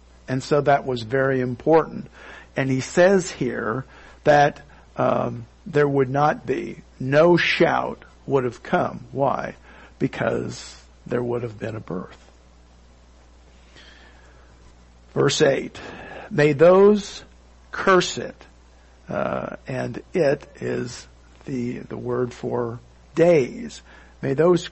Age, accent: 50-69, American